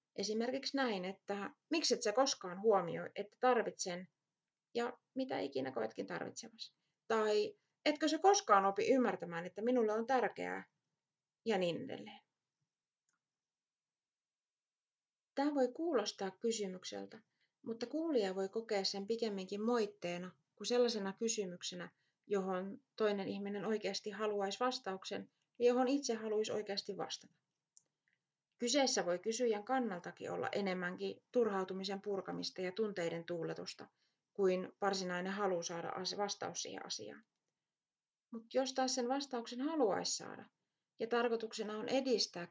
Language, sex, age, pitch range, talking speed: Finnish, female, 30-49, 185-245 Hz, 115 wpm